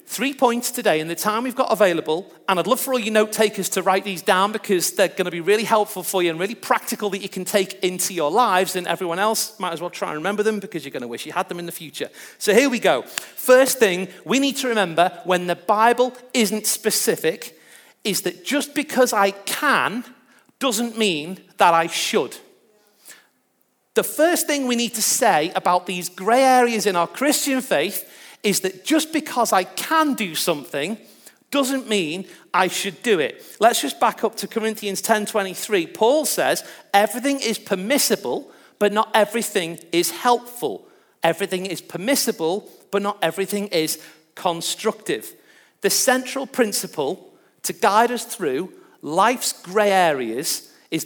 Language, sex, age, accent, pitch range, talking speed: English, male, 40-59, British, 185-255 Hz, 175 wpm